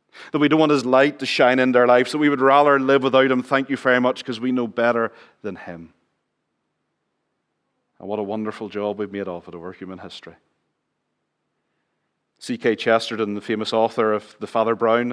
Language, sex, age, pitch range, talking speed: English, male, 40-59, 110-135 Hz, 200 wpm